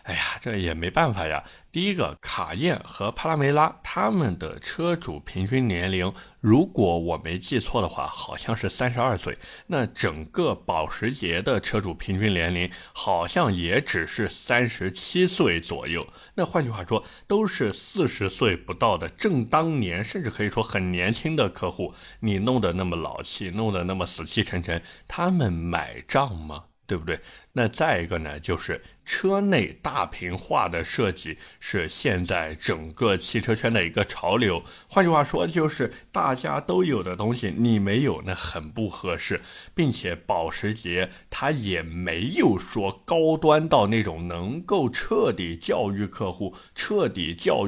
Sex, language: male, Chinese